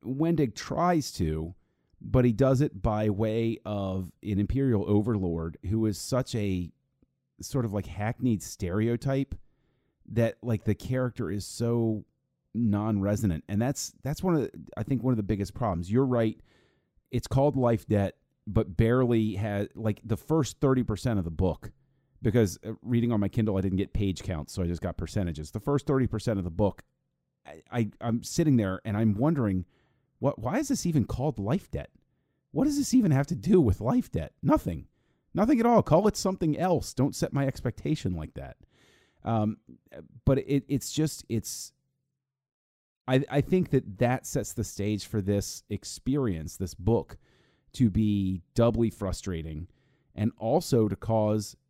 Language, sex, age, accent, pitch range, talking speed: English, male, 40-59, American, 100-135 Hz, 165 wpm